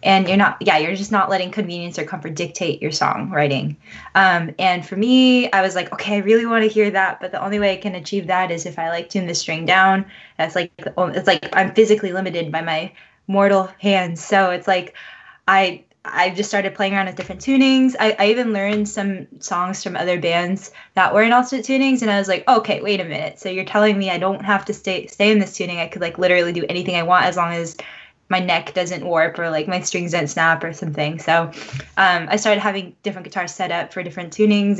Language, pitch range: English, 175-205 Hz